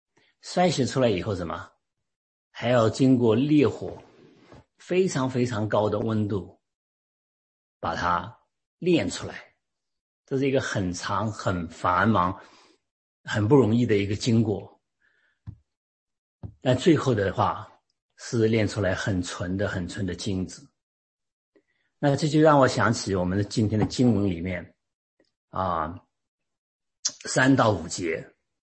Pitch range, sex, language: 100-130 Hz, male, English